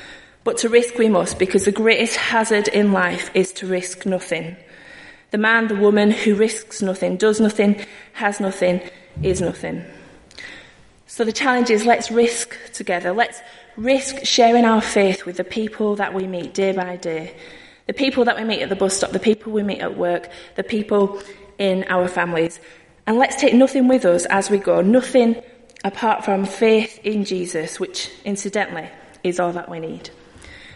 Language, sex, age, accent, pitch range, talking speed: English, female, 30-49, British, 185-225 Hz, 180 wpm